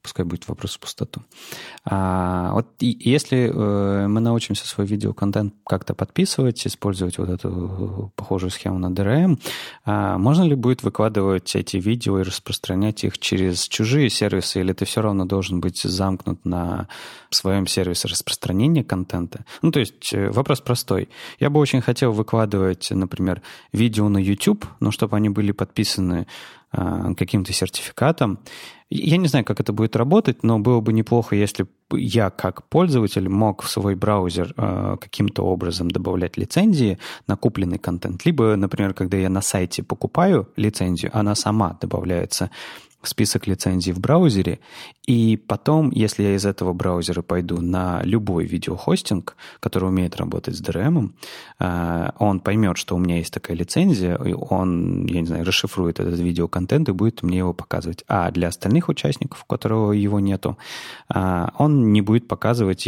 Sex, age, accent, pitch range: male, 20-39, native, 90-110 Hz